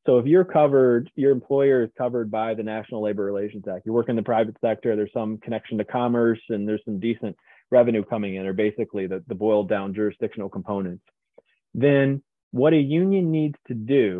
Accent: American